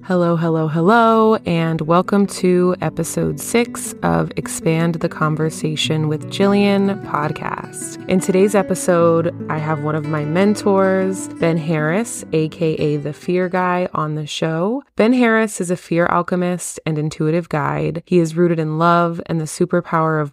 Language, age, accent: English, 20-39, American